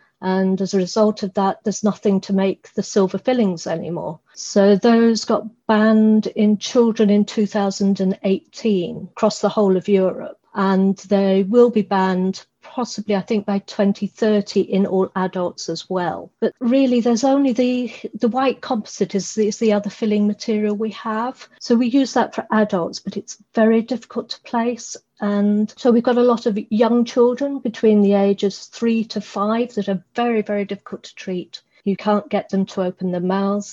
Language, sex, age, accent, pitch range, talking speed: English, female, 50-69, British, 195-230 Hz, 180 wpm